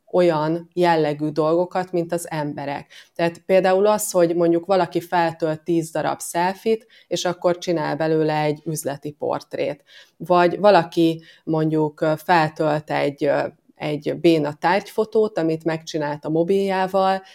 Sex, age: female, 20-39